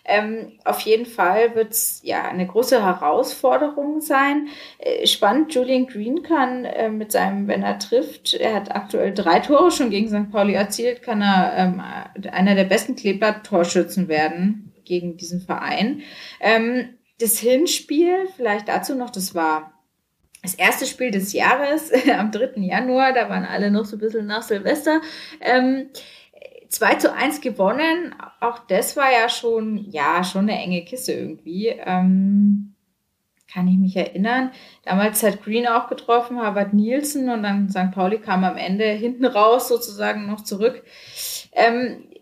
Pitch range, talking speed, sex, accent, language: 200-260 Hz, 155 wpm, female, German, German